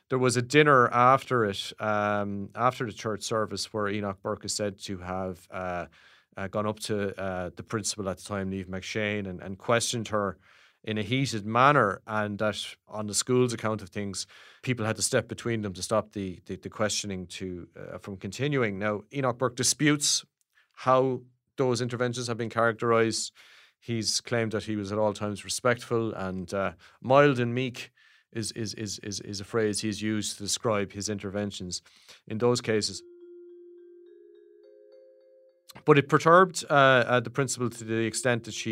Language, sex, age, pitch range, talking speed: English, male, 30-49, 105-125 Hz, 175 wpm